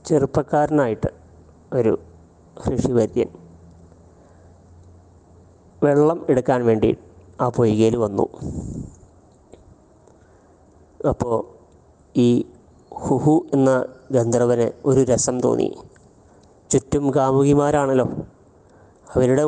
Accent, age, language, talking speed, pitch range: native, 20-39, Malayalam, 60 wpm, 90-140 Hz